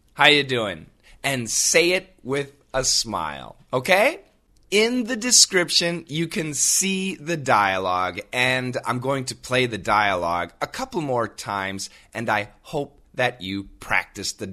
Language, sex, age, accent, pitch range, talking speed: Russian, male, 30-49, American, 125-185 Hz, 150 wpm